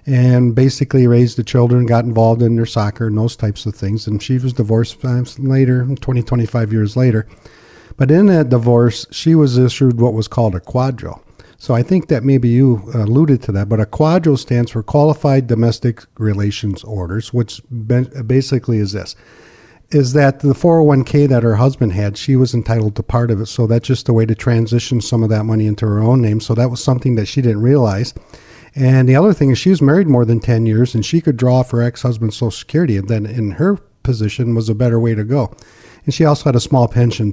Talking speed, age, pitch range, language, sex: 220 wpm, 50-69, 115-135 Hz, English, male